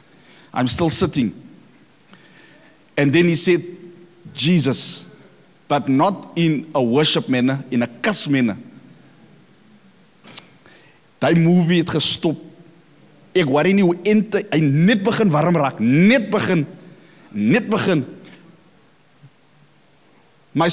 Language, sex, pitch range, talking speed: English, male, 150-220 Hz, 105 wpm